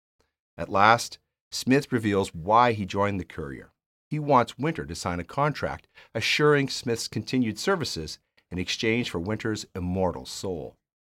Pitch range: 85-135 Hz